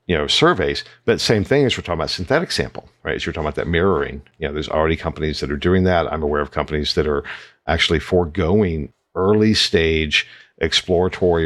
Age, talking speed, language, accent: 50-69, 205 wpm, English, American